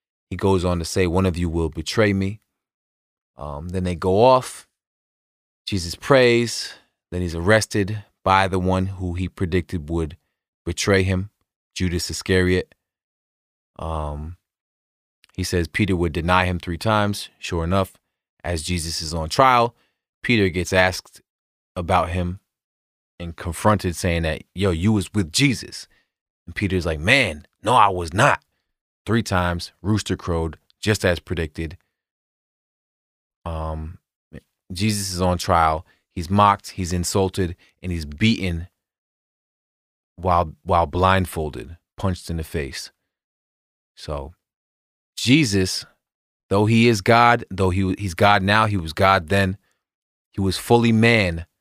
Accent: American